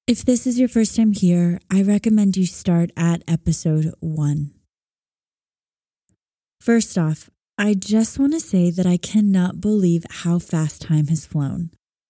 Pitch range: 160-195 Hz